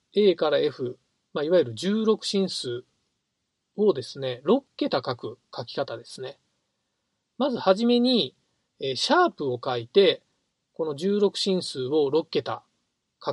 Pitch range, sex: 155-250 Hz, male